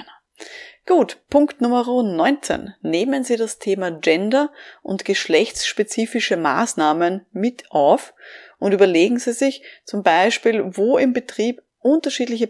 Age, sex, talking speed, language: 20-39, female, 115 wpm, German